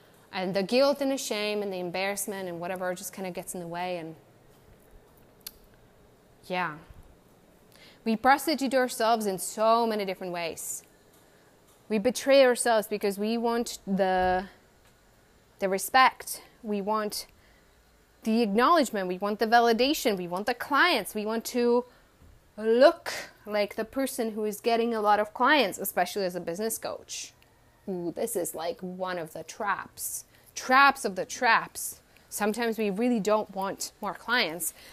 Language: English